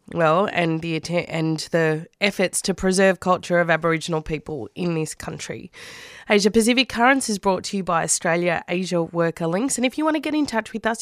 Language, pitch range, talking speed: English, 160-195 Hz, 200 wpm